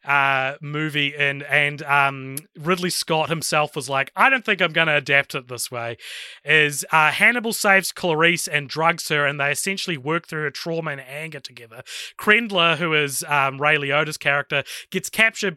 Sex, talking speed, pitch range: male, 180 wpm, 145-175 Hz